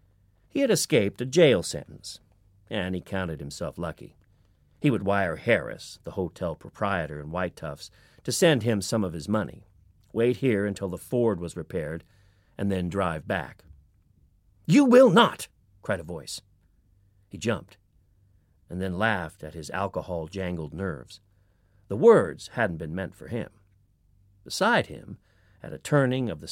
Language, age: English, 40-59